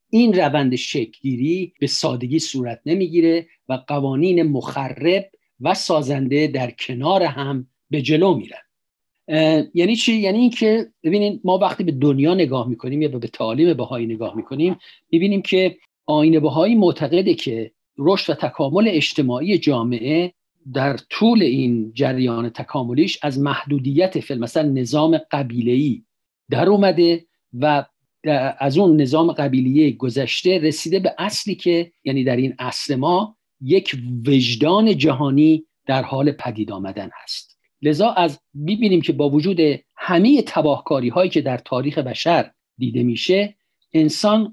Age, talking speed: 50-69, 130 wpm